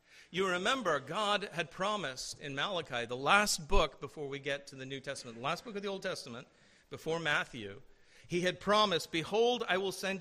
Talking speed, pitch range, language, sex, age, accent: 195 wpm, 125-160 Hz, English, male, 50-69, American